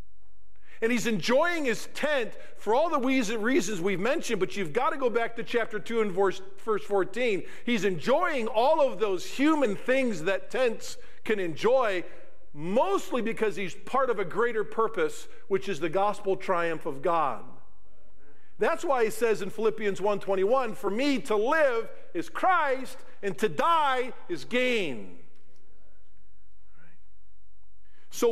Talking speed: 150 wpm